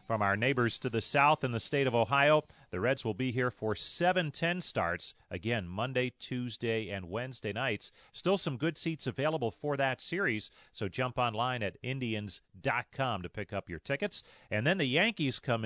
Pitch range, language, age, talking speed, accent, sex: 100-135 Hz, English, 40-59, 185 wpm, American, male